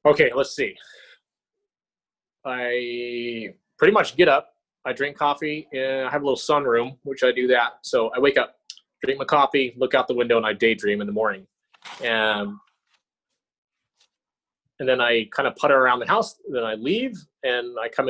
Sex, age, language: male, 30-49, English